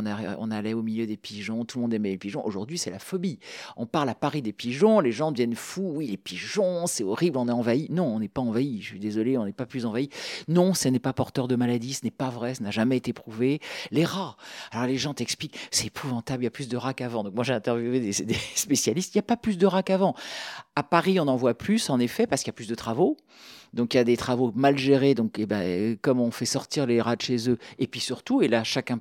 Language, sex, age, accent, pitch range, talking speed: French, male, 50-69, French, 120-185 Hz, 275 wpm